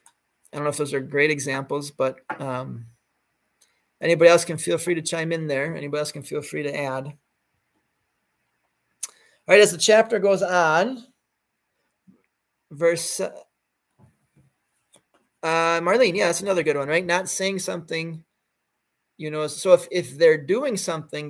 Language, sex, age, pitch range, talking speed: English, male, 30-49, 140-175 Hz, 150 wpm